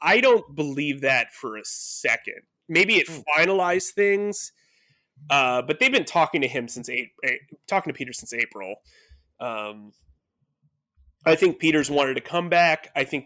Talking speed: 160 wpm